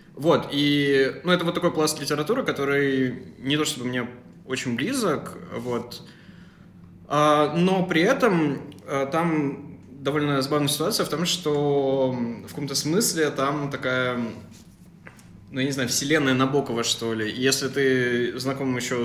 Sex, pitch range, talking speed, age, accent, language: male, 115-145 Hz, 140 wpm, 20-39, native, Russian